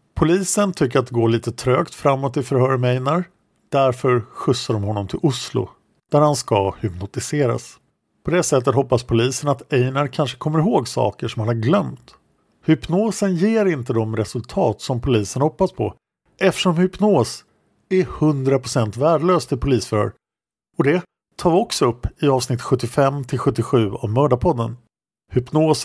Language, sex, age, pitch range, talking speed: English, male, 50-69, 115-150 Hz, 150 wpm